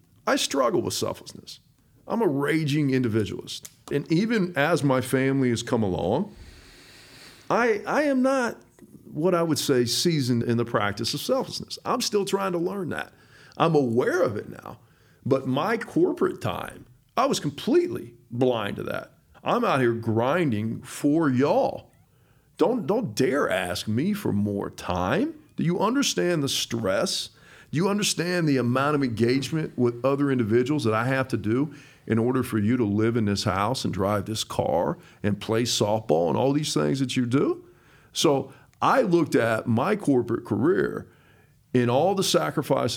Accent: American